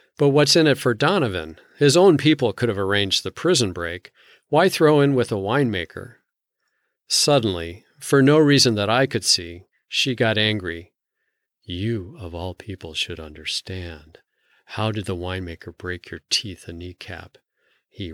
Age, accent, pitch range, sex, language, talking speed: 40-59, American, 85-115 Hz, male, English, 160 wpm